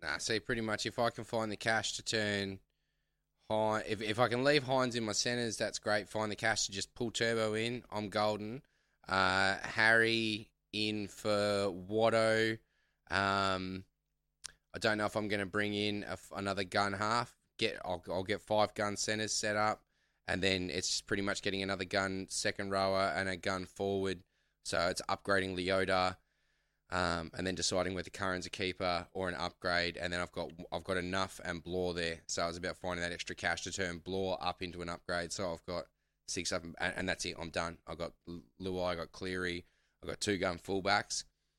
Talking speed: 210 wpm